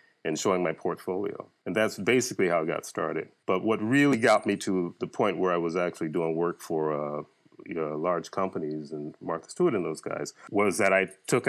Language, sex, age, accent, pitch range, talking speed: English, male, 40-59, American, 80-100 Hz, 215 wpm